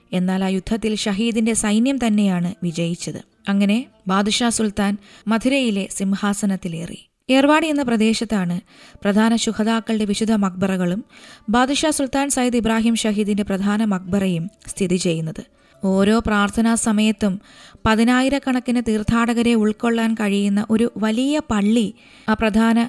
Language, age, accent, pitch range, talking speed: Malayalam, 20-39, native, 200-235 Hz, 100 wpm